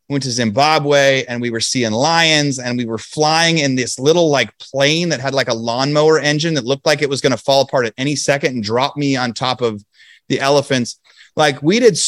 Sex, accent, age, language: male, American, 30-49, English